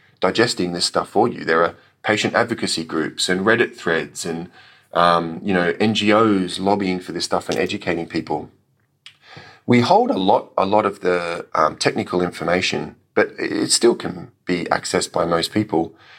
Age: 30-49